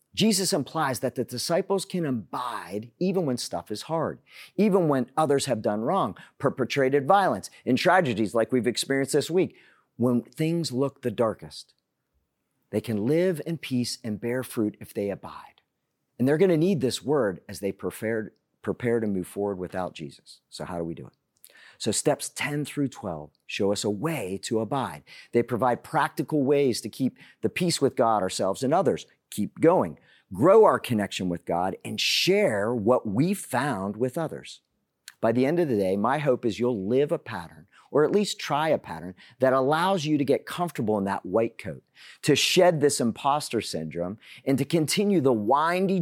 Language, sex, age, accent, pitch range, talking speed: English, male, 50-69, American, 105-150 Hz, 185 wpm